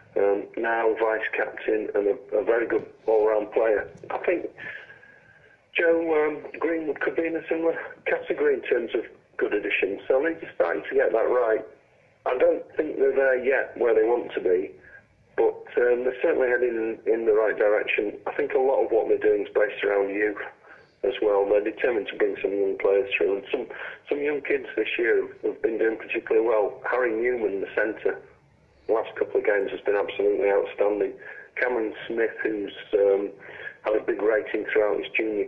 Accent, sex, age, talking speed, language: British, male, 40-59, 190 wpm, English